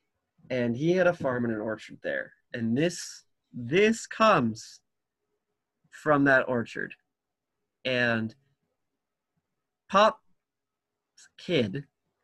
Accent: American